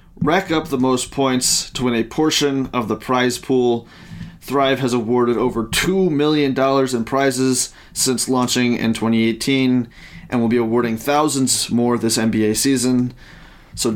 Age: 30-49